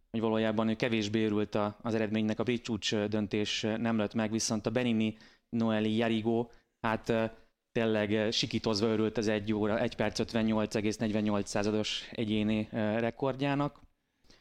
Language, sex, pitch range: Hungarian, male, 105-115 Hz